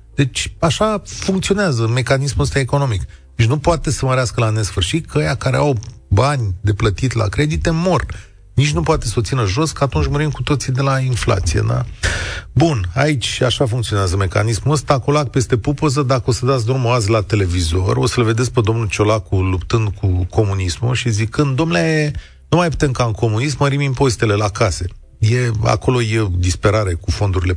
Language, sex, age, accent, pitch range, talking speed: Romanian, male, 30-49, native, 100-135 Hz, 185 wpm